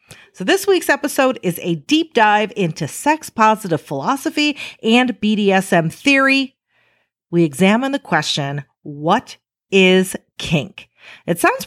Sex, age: female, 40-59